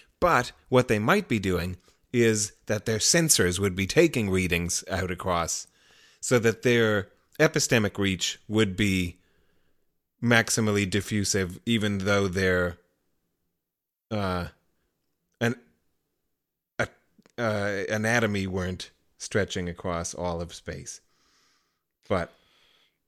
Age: 30-49